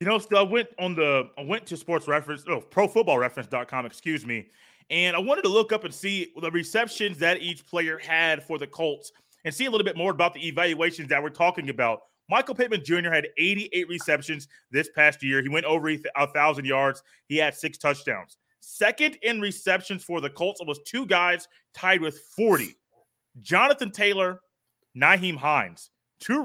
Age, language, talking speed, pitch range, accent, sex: 30-49, English, 190 wpm, 150-200 Hz, American, male